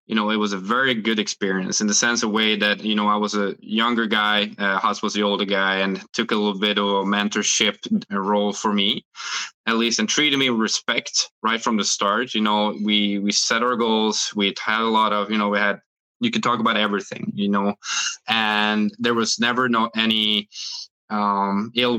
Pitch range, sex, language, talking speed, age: 105-115 Hz, male, English, 220 wpm, 20-39